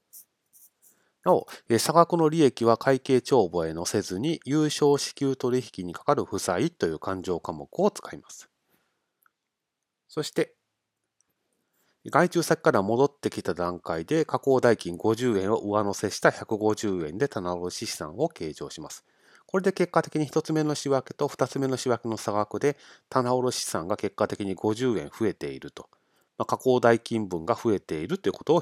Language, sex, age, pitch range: Japanese, male, 30-49, 100-145 Hz